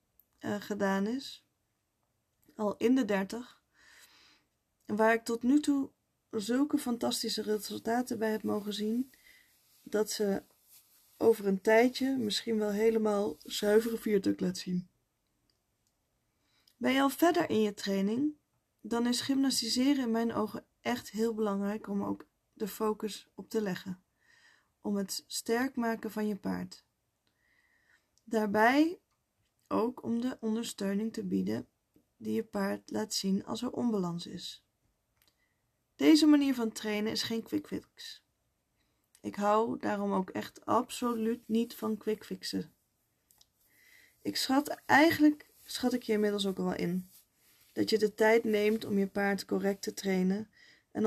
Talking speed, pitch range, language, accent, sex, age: 135 wpm, 200-240 Hz, Dutch, Dutch, female, 20-39